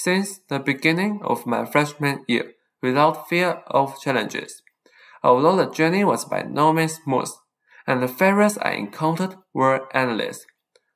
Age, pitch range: 20-39, 125-185 Hz